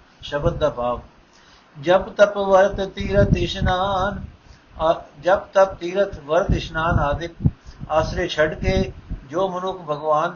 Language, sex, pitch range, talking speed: Punjabi, male, 155-195 Hz, 110 wpm